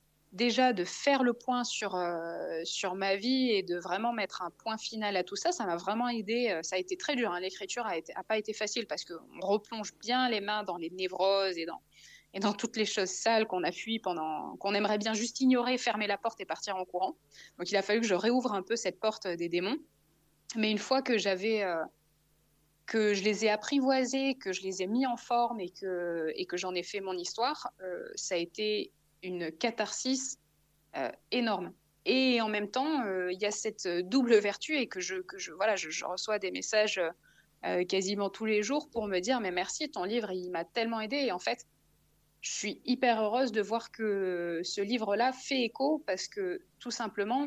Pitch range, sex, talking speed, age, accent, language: 185-240 Hz, female, 220 wpm, 20-39, French, French